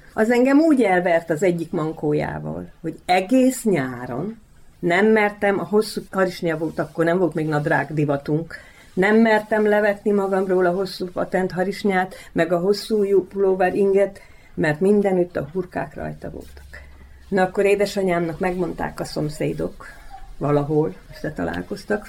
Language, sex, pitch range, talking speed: Hungarian, female, 150-200 Hz, 135 wpm